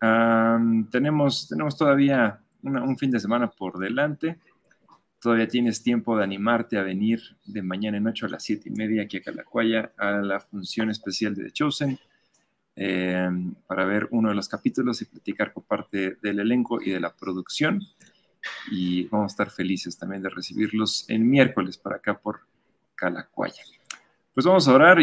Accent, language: Mexican, Spanish